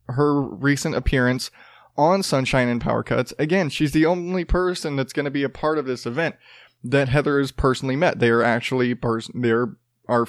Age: 20-39